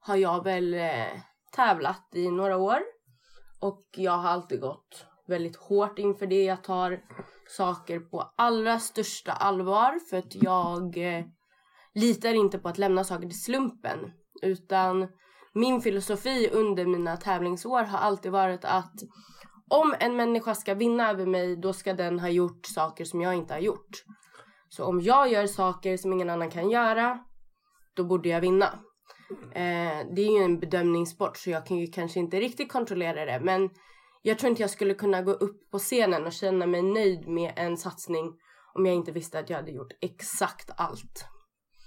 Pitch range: 175-215 Hz